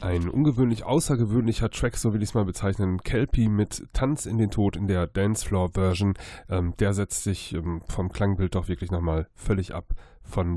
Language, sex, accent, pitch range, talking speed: German, male, German, 95-115 Hz, 175 wpm